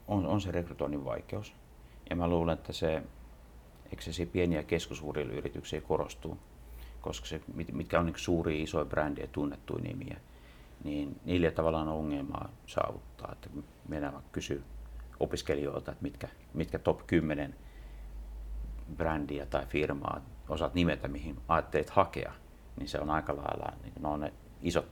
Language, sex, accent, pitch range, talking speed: Finnish, male, native, 65-85 Hz, 140 wpm